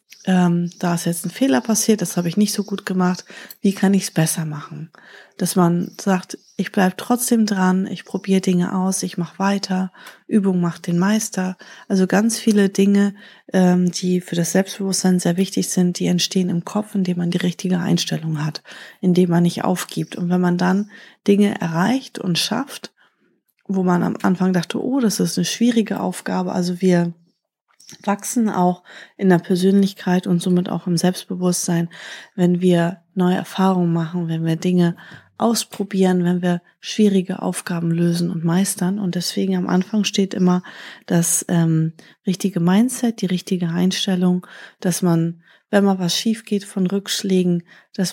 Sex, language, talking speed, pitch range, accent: female, German, 165 wpm, 175-200 Hz, German